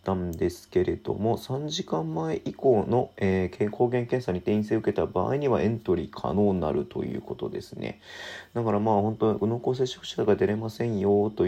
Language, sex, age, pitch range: Japanese, male, 40-59, 90-110 Hz